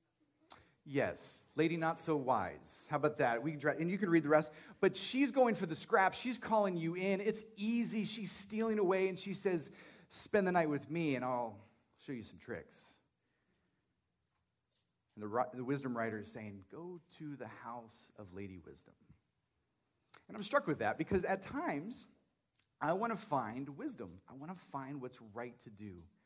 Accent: American